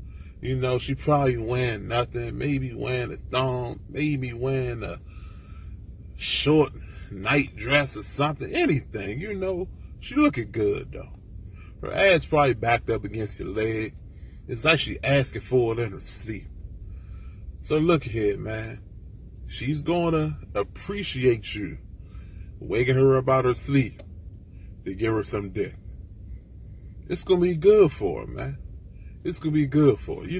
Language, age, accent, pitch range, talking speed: English, 30-49, American, 95-145 Hz, 155 wpm